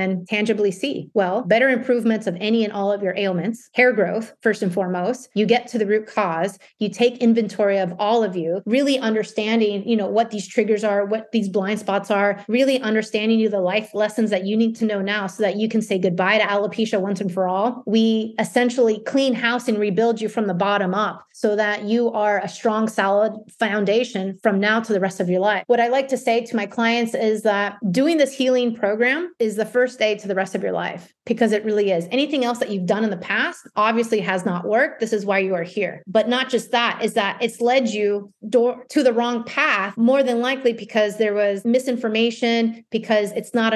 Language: English